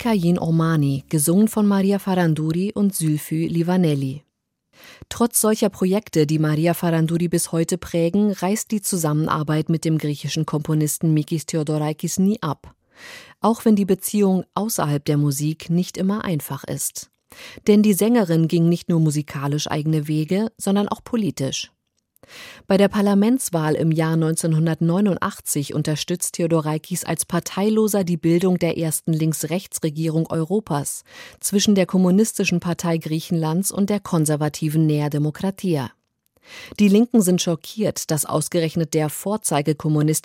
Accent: German